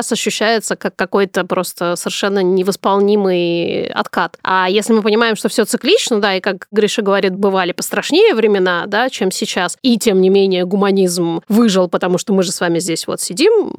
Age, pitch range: 20-39, 185-230 Hz